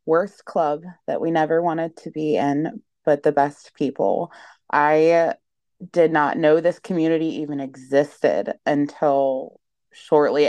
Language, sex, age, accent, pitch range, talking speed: English, female, 20-39, American, 140-160 Hz, 130 wpm